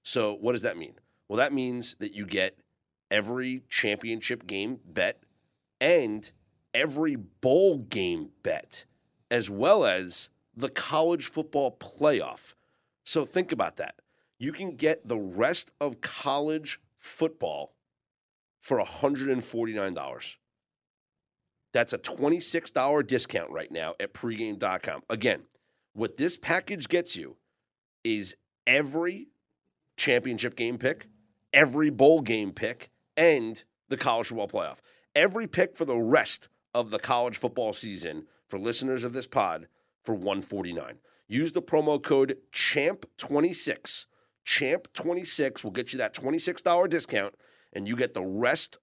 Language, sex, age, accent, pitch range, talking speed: English, male, 40-59, American, 115-155 Hz, 125 wpm